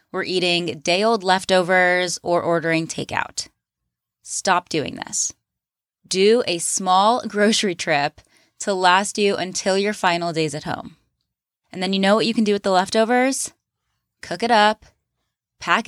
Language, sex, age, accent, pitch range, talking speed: English, female, 20-39, American, 175-215 Hz, 150 wpm